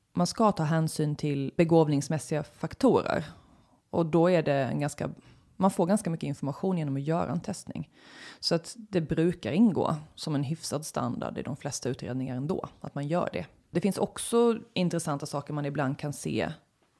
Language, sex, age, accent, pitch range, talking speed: Swedish, female, 30-49, native, 145-175 Hz, 160 wpm